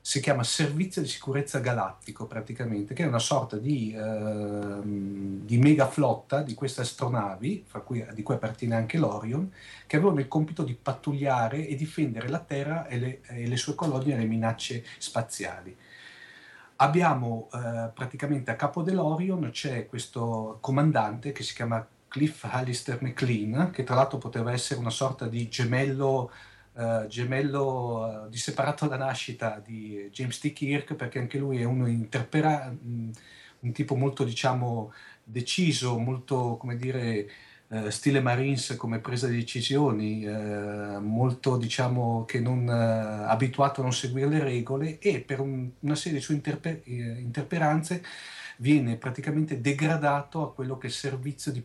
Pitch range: 115-140 Hz